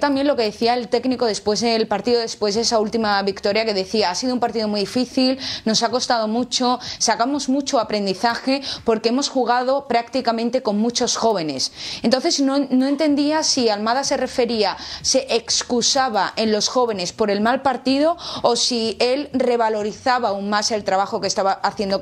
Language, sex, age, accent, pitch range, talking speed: Spanish, female, 20-39, Spanish, 205-255 Hz, 175 wpm